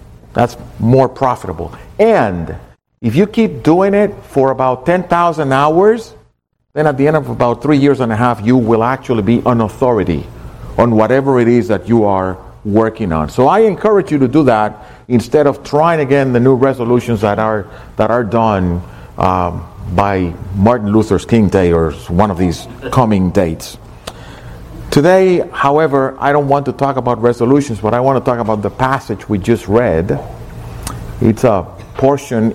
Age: 50-69